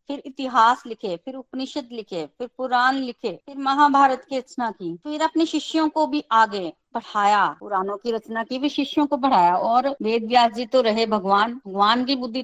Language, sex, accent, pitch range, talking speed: Hindi, female, native, 215-275 Hz, 190 wpm